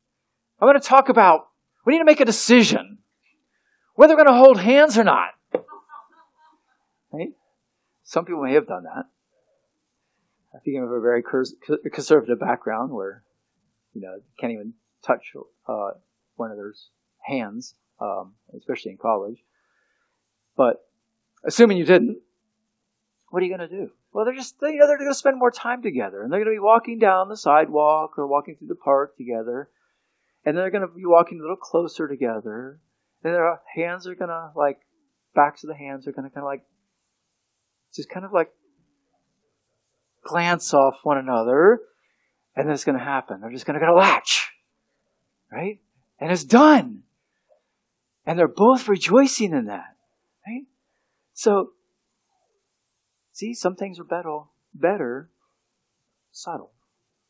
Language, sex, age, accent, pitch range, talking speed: English, male, 50-69, American, 145-240 Hz, 155 wpm